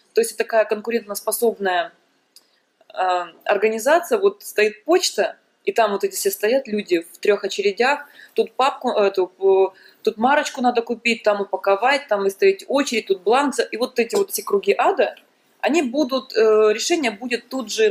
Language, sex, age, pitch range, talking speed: Russian, female, 20-39, 195-305 Hz, 170 wpm